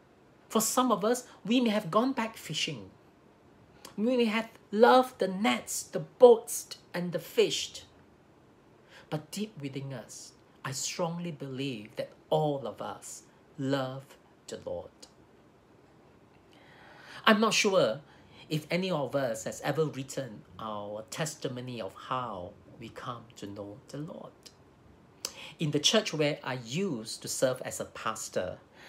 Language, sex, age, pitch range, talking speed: English, male, 50-69, 130-185 Hz, 135 wpm